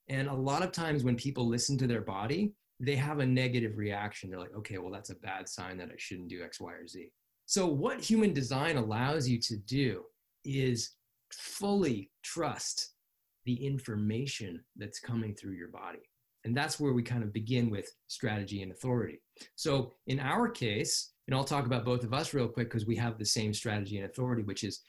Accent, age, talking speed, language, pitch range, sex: American, 20-39, 205 wpm, English, 110-135 Hz, male